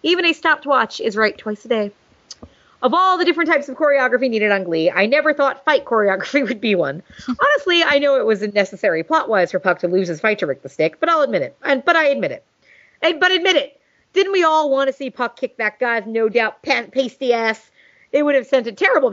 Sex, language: female, English